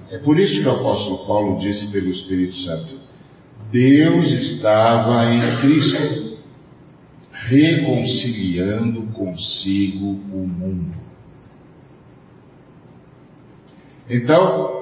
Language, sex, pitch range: Portuguese, male, 95-130 Hz